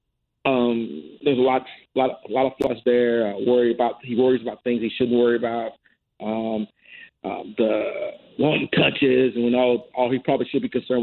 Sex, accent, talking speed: male, American, 200 wpm